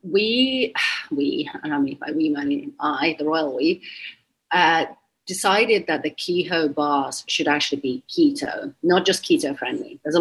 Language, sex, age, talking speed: English, female, 30-49, 170 wpm